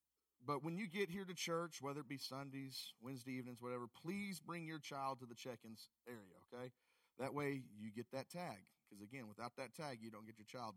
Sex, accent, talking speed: male, American, 225 wpm